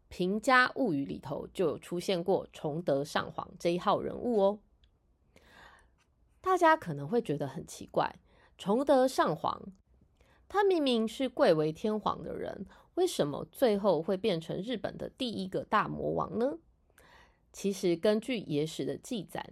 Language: Chinese